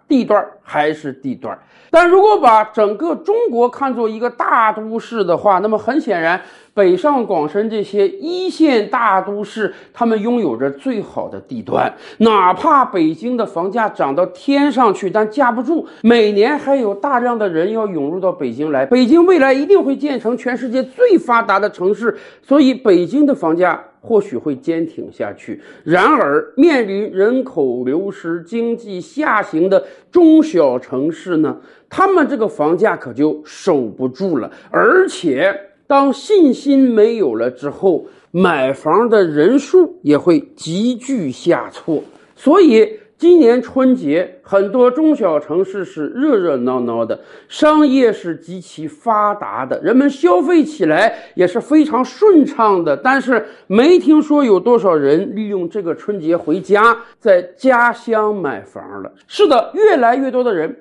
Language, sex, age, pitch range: Chinese, male, 50-69, 195-290 Hz